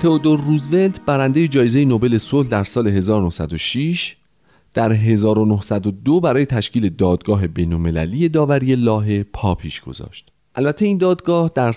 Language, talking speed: Persian, 120 wpm